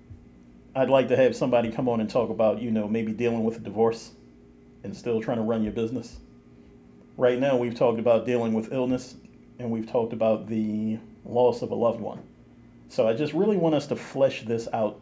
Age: 40-59